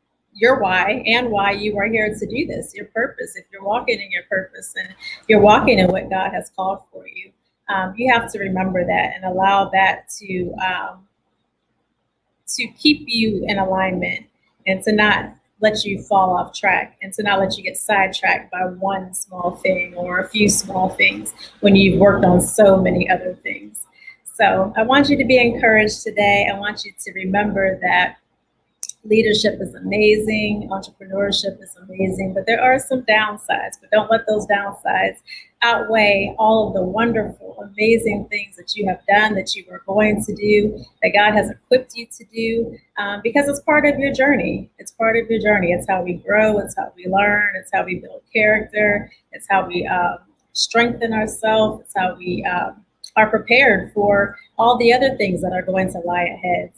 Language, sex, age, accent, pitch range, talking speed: English, female, 30-49, American, 190-220 Hz, 190 wpm